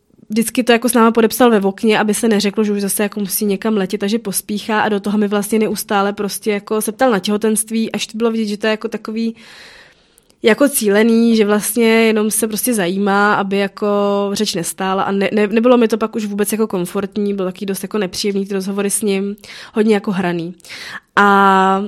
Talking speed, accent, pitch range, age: 210 wpm, native, 195-215 Hz, 20-39